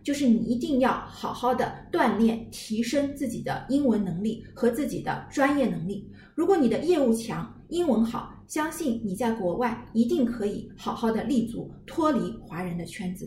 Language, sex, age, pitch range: Chinese, female, 20-39, 215-260 Hz